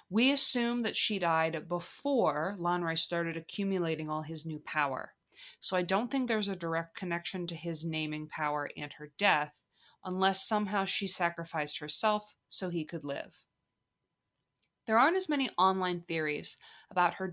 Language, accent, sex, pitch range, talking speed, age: English, American, female, 165-200 Hz, 155 wpm, 20-39